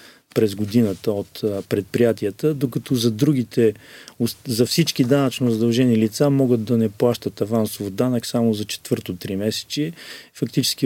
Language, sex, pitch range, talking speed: Bulgarian, male, 110-135 Hz, 125 wpm